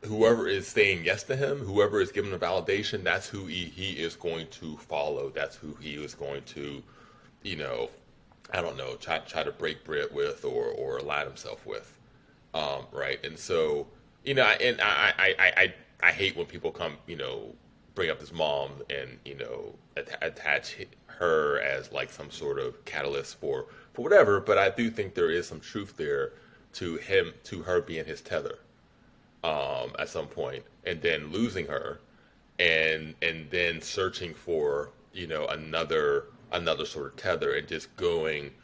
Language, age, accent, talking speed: English, 30-49, American, 180 wpm